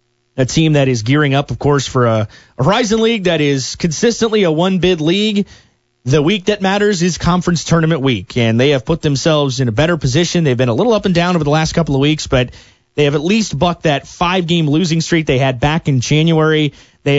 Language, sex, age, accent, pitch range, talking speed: English, male, 30-49, American, 130-165 Hz, 225 wpm